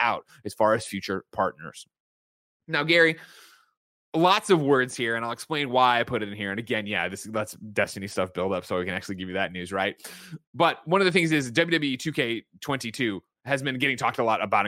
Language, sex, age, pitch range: English, male, 20-39, 115-160 Hz